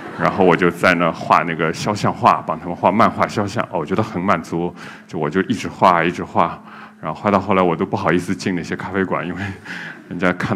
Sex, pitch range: male, 95-130 Hz